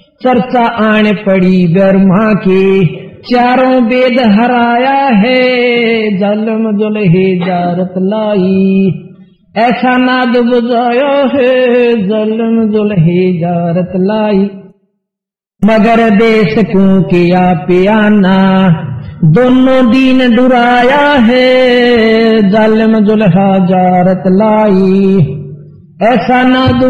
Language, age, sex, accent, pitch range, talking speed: Hindi, 50-69, male, native, 185-245 Hz, 75 wpm